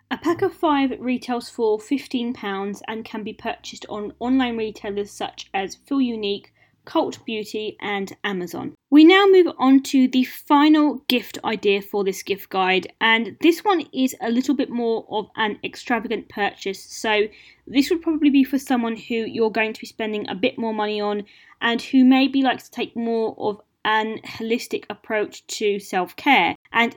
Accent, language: British, English